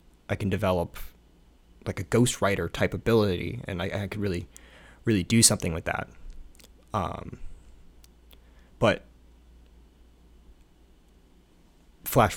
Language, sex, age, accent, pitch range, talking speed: English, male, 20-39, American, 85-110 Hz, 100 wpm